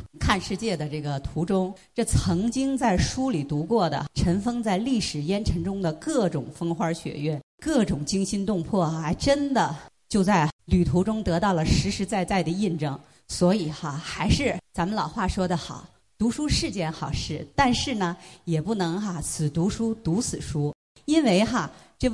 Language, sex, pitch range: Chinese, female, 165-230 Hz